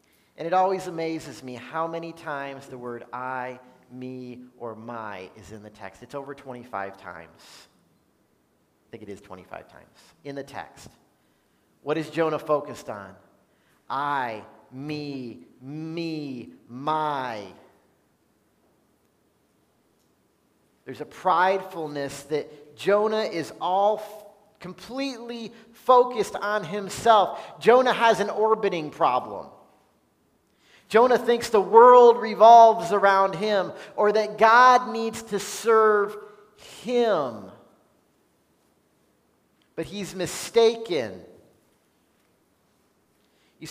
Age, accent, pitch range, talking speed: 40-59, American, 145-210 Hz, 100 wpm